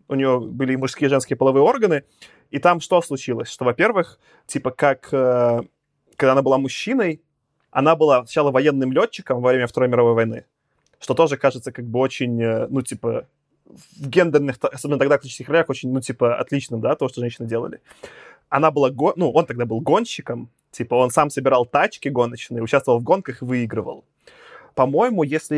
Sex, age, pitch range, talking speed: male, 20-39, 125-155 Hz, 175 wpm